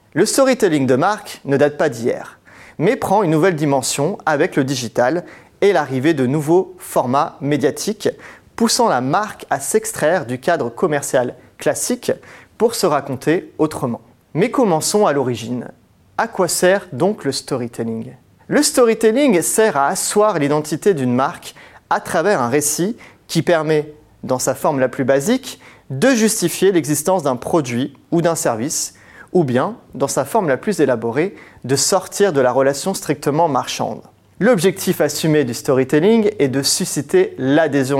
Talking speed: 150 wpm